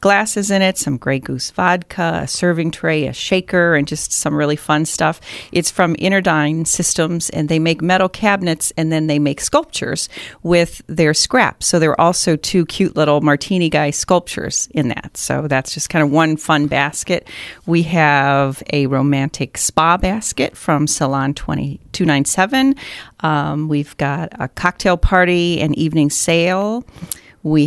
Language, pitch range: English, 145-180 Hz